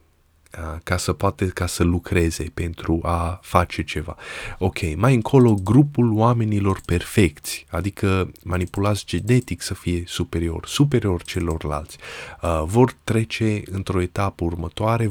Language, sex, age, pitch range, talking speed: Romanian, male, 20-39, 85-100 Hz, 120 wpm